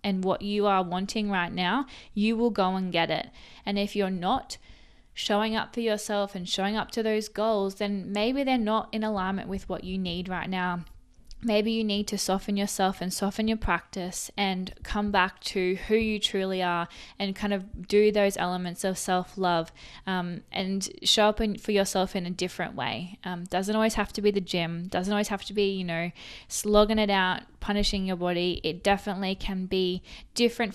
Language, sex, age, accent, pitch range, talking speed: English, female, 20-39, Australian, 185-215 Hz, 195 wpm